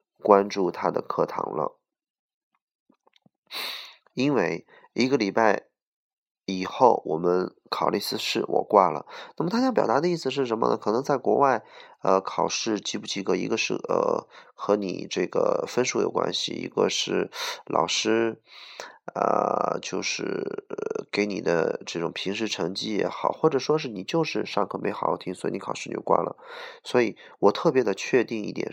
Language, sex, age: Chinese, male, 20-39